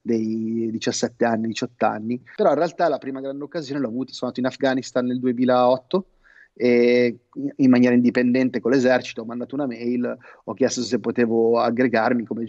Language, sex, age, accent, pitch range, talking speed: Italian, male, 30-49, native, 120-145 Hz, 175 wpm